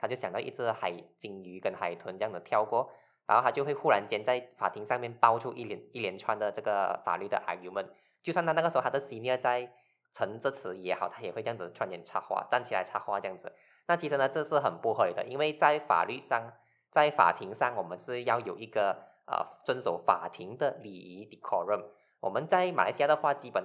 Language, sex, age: Chinese, male, 20-39